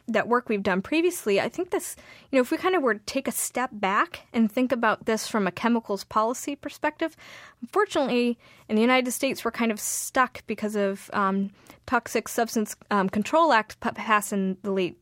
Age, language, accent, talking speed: 20-39, English, American, 200 wpm